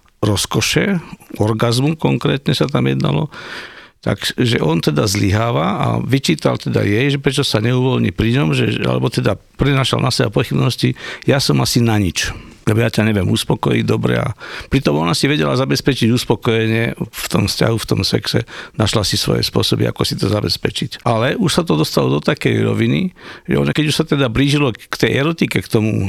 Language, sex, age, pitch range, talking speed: Slovak, male, 60-79, 110-140 Hz, 180 wpm